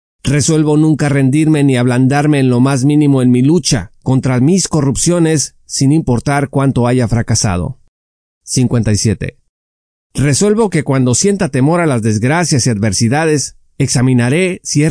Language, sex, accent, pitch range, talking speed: Spanish, male, Mexican, 120-155 Hz, 135 wpm